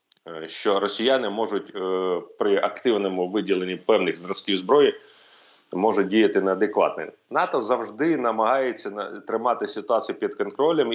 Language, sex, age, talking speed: Ukrainian, male, 30-49, 105 wpm